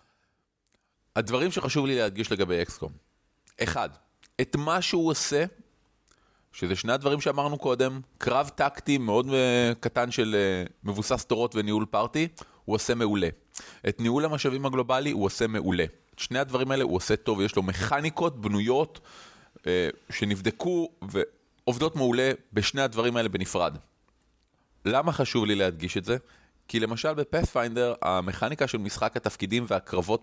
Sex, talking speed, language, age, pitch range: male, 135 wpm, Hebrew, 30-49, 100-140 Hz